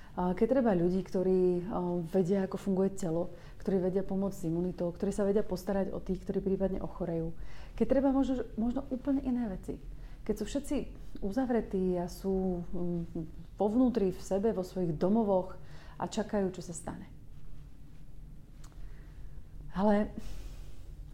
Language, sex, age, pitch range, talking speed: Slovak, female, 30-49, 165-200 Hz, 135 wpm